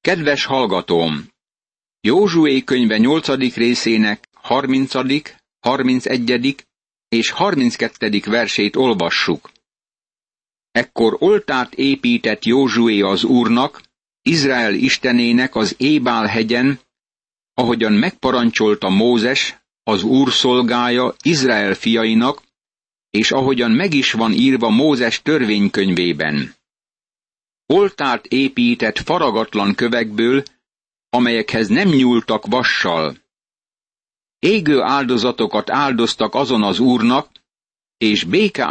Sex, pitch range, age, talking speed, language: male, 110-130 Hz, 60-79, 85 wpm, Hungarian